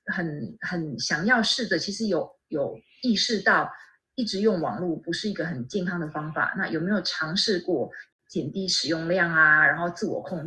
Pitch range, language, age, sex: 165-210 Hz, Chinese, 30-49, female